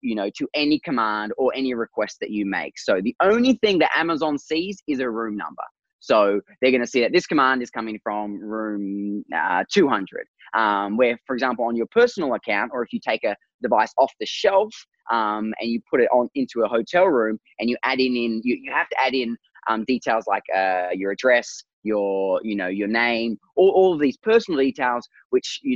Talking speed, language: 215 wpm, English